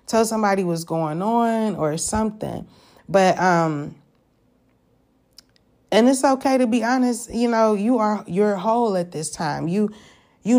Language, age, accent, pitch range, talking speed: English, 30-49, American, 165-205 Hz, 145 wpm